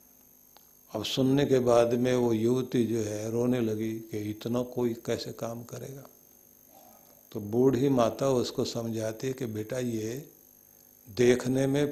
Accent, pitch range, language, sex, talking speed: native, 120-155 Hz, Hindi, male, 140 wpm